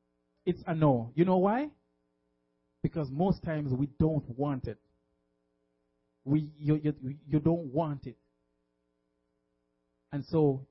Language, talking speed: English, 125 wpm